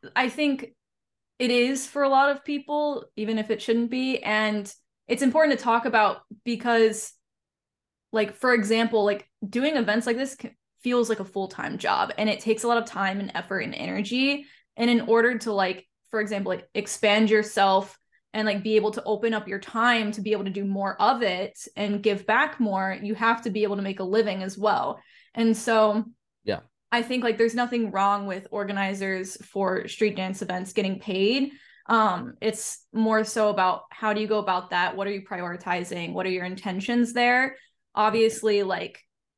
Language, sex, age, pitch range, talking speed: English, female, 10-29, 200-235 Hz, 190 wpm